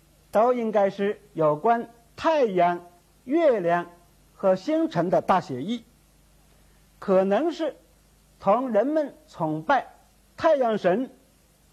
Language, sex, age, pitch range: Chinese, male, 50-69, 175-275 Hz